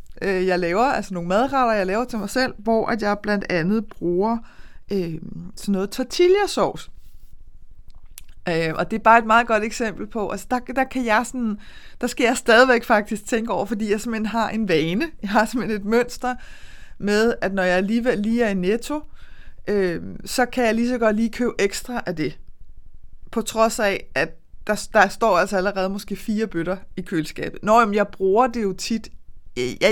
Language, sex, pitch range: Danish, female, 190-230 Hz